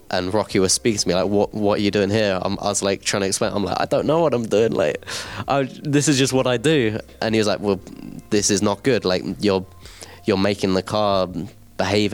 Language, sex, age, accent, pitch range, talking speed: English, male, 20-39, British, 90-110 Hz, 255 wpm